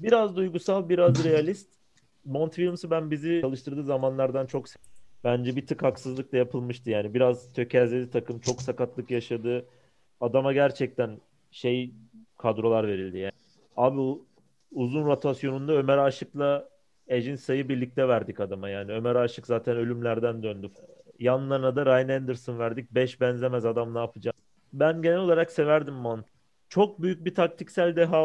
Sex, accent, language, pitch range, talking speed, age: male, native, Turkish, 120-150 Hz, 140 wpm, 40-59